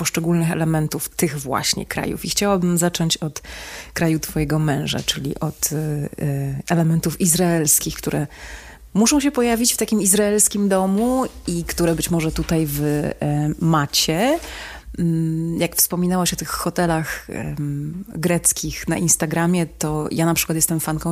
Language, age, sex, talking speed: Polish, 30-49, female, 130 wpm